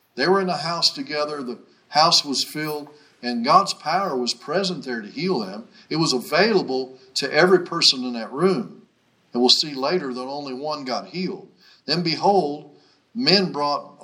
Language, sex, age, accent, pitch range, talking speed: English, male, 50-69, American, 130-185 Hz, 175 wpm